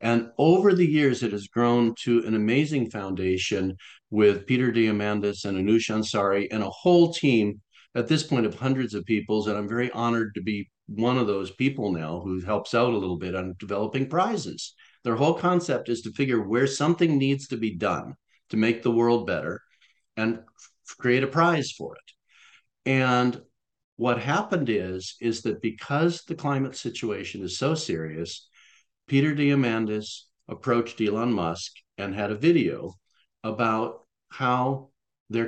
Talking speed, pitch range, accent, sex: 165 wpm, 105-130 Hz, American, male